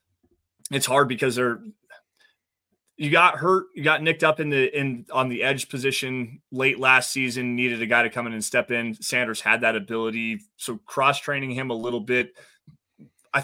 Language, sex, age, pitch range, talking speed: English, male, 30-49, 120-165 Hz, 190 wpm